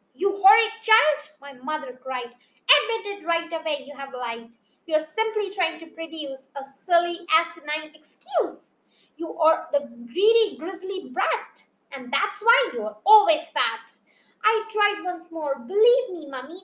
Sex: female